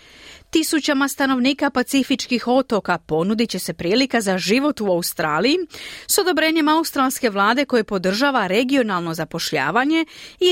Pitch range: 190-275 Hz